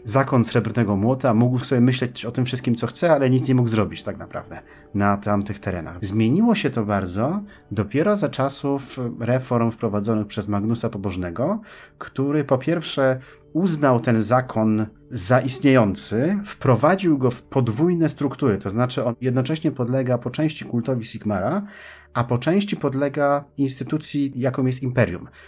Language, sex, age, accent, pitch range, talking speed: Polish, male, 30-49, native, 105-140 Hz, 150 wpm